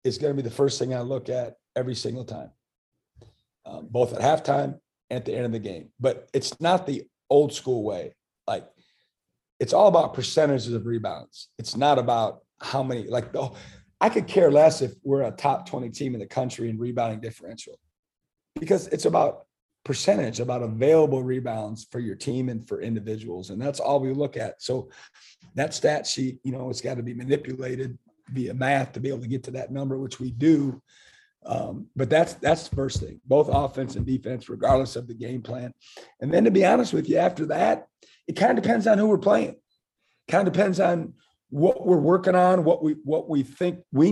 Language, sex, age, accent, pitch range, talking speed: English, male, 40-59, American, 125-165 Hz, 205 wpm